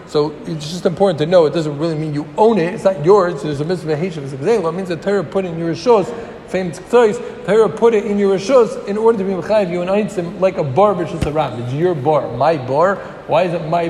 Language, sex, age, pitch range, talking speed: English, male, 50-69, 160-210 Hz, 255 wpm